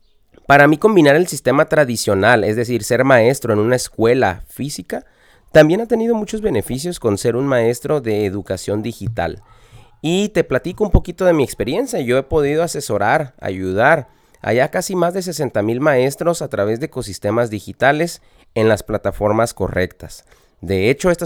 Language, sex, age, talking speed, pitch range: Spanish, male, 30-49, 165 wpm, 115-155 Hz